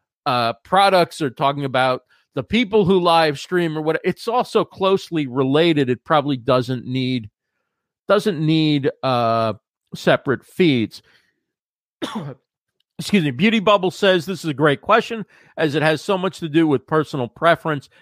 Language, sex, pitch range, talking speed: English, male, 130-180 Hz, 150 wpm